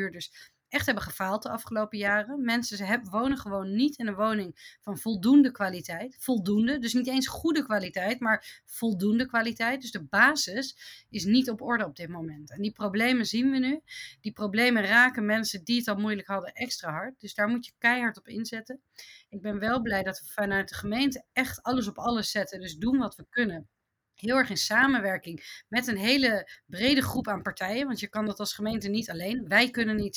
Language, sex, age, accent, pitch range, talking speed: Dutch, female, 30-49, Dutch, 200-240 Hz, 200 wpm